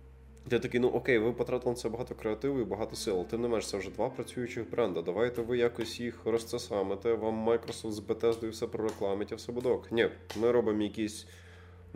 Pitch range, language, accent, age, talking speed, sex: 100-115 Hz, Ukrainian, native, 20-39, 200 wpm, male